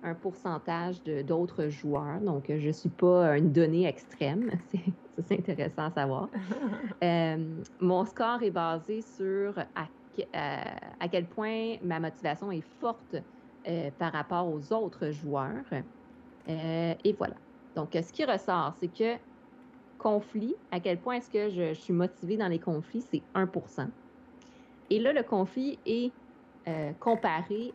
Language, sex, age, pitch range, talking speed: French, female, 30-49, 165-245 Hz, 145 wpm